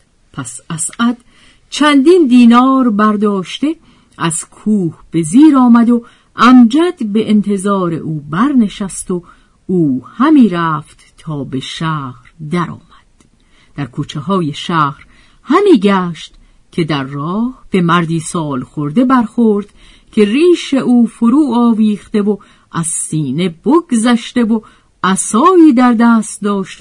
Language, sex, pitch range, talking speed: Persian, female, 160-240 Hz, 120 wpm